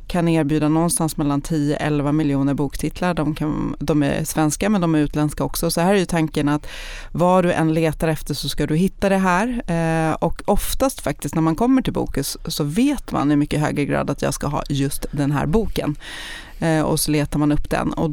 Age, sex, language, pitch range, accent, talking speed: 30-49, female, Swedish, 150-175 Hz, native, 210 wpm